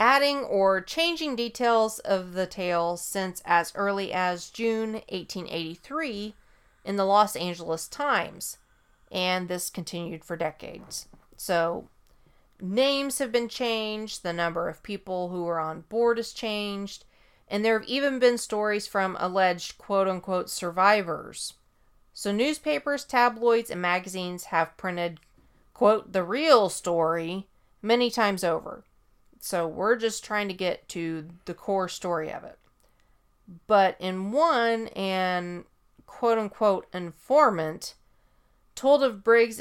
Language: English